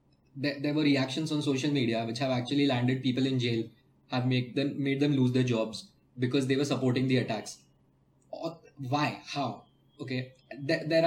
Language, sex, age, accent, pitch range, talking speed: English, male, 20-39, Indian, 125-150 Hz, 170 wpm